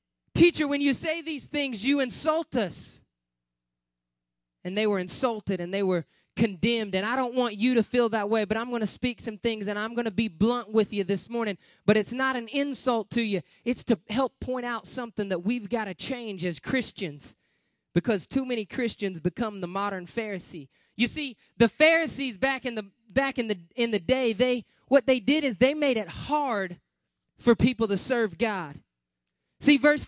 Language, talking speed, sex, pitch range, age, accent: English, 200 wpm, male, 195-255 Hz, 20-39, American